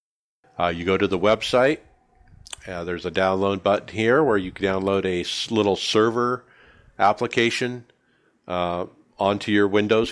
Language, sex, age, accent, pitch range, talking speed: English, male, 50-69, American, 95-115 Hz, 140 wpm